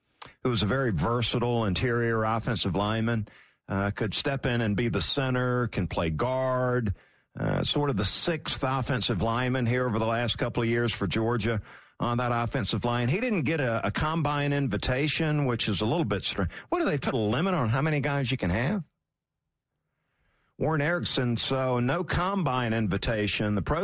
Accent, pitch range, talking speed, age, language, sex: American, 115-170 Hz, 185 wpm, 50-69, English, male